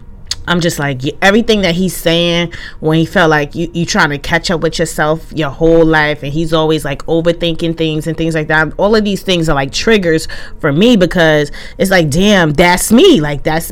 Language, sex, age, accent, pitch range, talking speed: English, female, 30-49, American, 150-180 Hz, 210 wpm